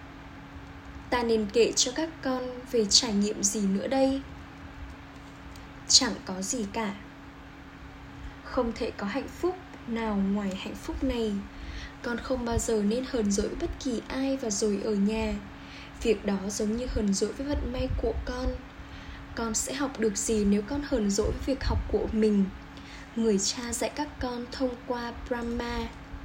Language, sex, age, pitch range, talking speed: Vietnamese, female, 10-29, 215-255 Hz, 165 wpm